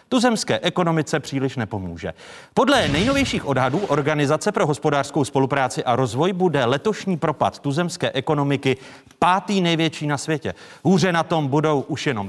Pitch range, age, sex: 120-165 Hz, 40-59, male